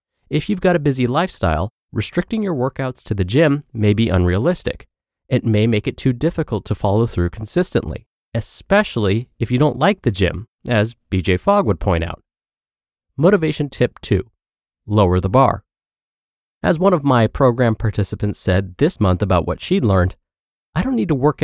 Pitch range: 100-140 Hz